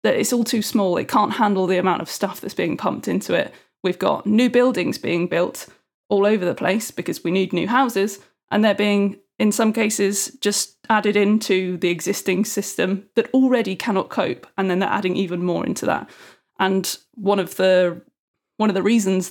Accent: British